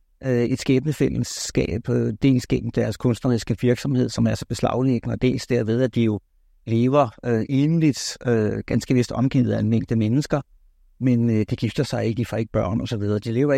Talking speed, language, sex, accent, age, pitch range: 190 wpm, Danish, male, native, 60-79, 115-140 Hz